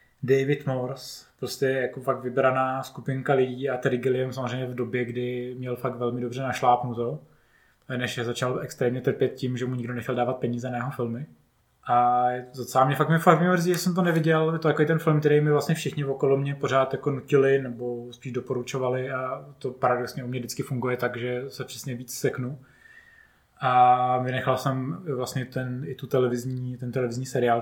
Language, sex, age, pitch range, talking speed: Czech, male, 20-39, 120-135 Hz, 195 wpm